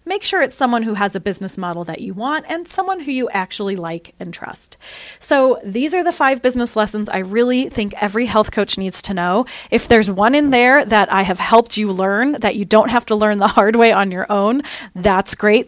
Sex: female